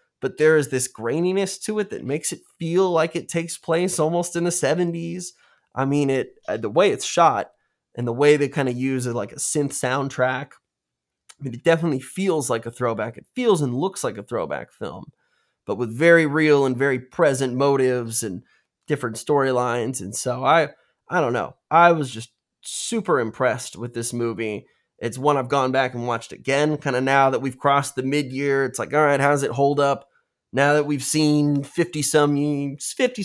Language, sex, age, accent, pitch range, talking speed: English, male, 20-39, American, 125-155 Hz, 200 wpm